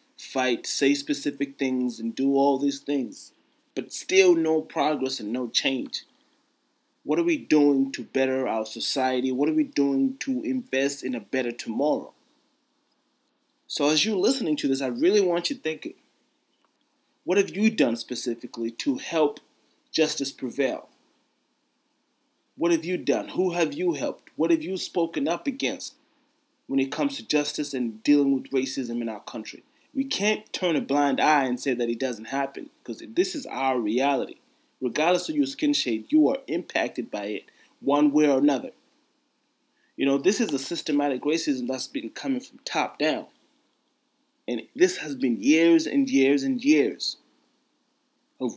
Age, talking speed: 30-49, 165 wpm